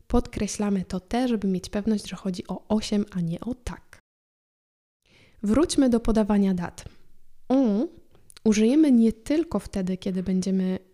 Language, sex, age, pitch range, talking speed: Polish, female, 20-39, 190-230 Hz, 135 wpm